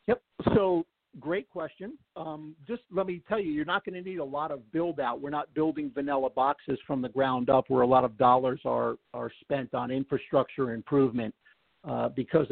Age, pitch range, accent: 50-69, 130-160 Hz, American